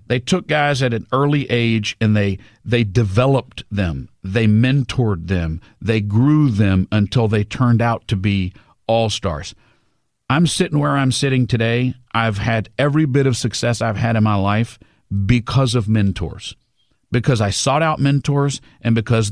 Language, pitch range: English, 100-130 Hz